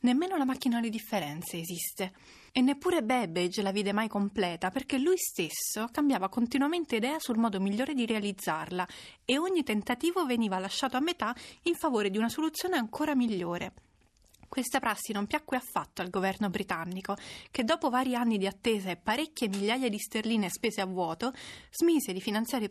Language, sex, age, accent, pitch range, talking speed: Italian, female, 30-49, native, 200-270 Hz, 170 wpm